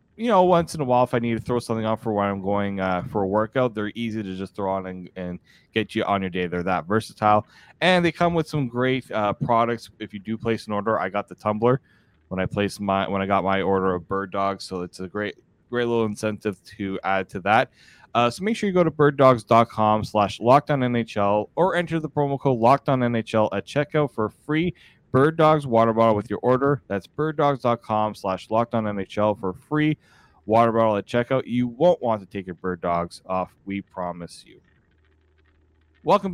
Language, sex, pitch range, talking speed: English, male, 100-125 Hz, 220 wpm